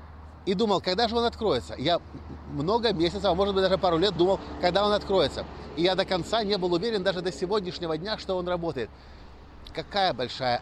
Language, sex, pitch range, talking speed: Russian, male, 145-195 Hz, 190 wpm